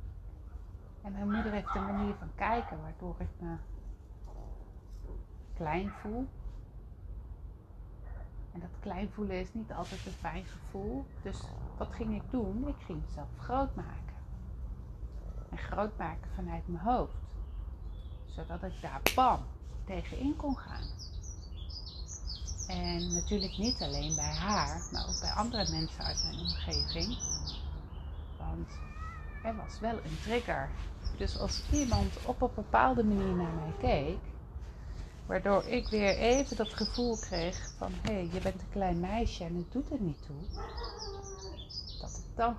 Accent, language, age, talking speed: Dutch, Dutch, 30-49, 140 wpm